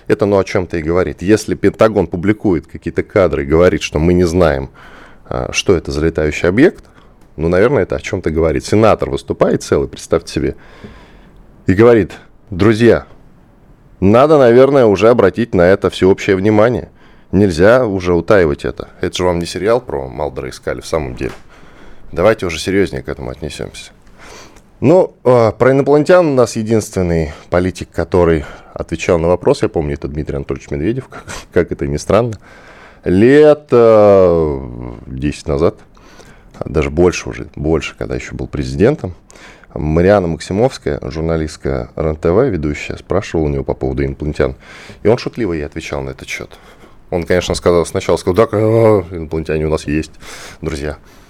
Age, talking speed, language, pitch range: 10-29, 155 wpm, Russian, 75-100 Hz